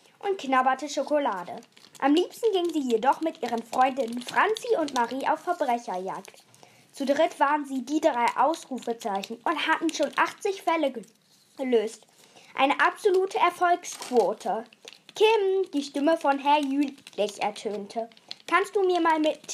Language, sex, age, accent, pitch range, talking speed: German, female, 20-39, German, 230-330 Hz, 135 wpm